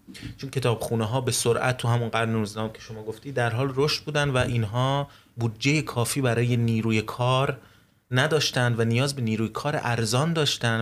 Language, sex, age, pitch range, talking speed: Persian, male, 30-49, 110-135 Hz, 165 wpm